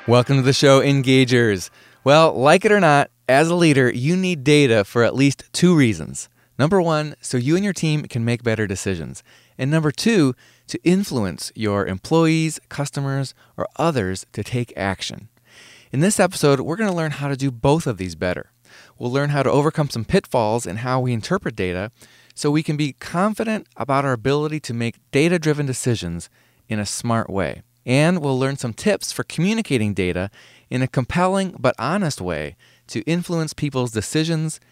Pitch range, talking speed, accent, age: 115-160 Hz, 180 wpm, American, 30-49